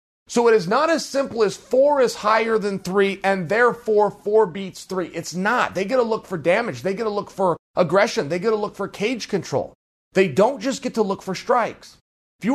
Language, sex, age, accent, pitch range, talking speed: English, male, 40-59, American, 175-240 Hz, 230 wpm